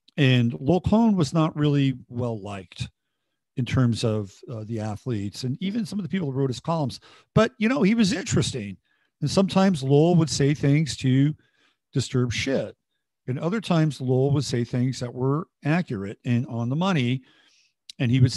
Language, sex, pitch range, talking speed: English, male, 125-160 Hz, 180 wpm